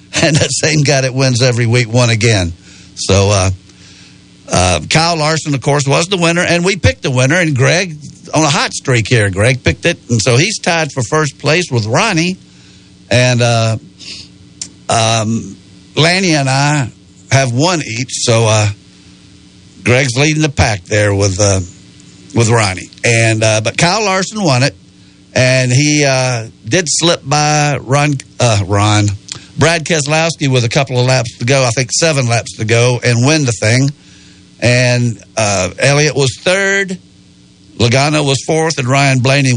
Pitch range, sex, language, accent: 105-145 Hz, male, English, American